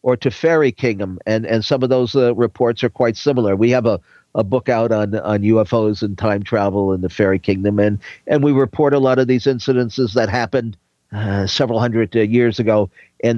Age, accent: 50-69, American